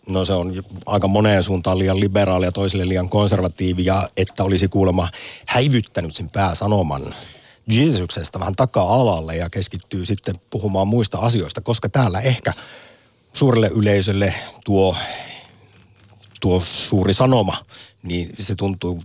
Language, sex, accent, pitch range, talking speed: Finnish, male, native, 95-120 Hz, 125 wpm